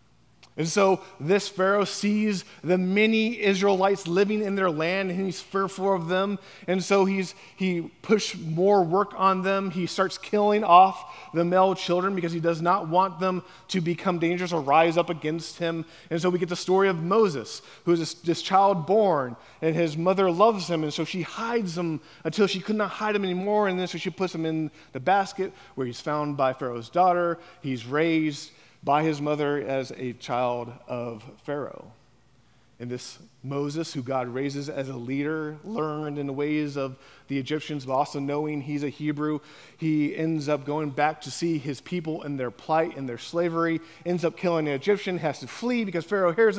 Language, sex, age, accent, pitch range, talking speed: English, male, 20-39, American, 150-195 Hz, 195 wpm